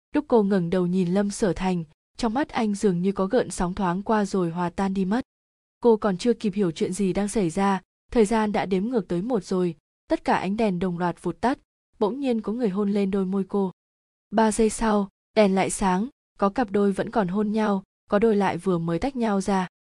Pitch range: 185-225 Hz